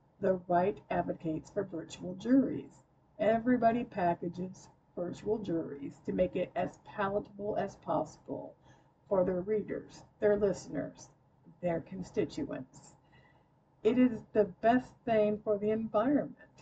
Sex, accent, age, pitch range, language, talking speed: female, American, 50-69, 175-225 Hz, English, 115 wpm